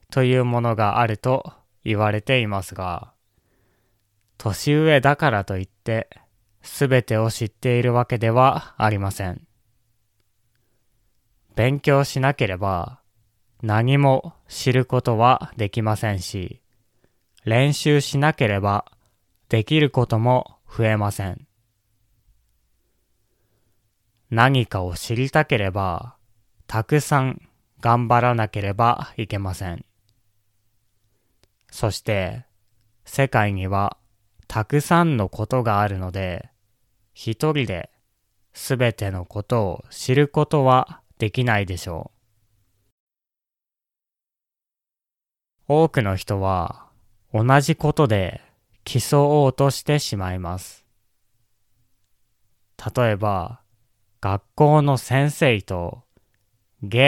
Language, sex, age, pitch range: Japanese, male, 20-39, 100-125 Hz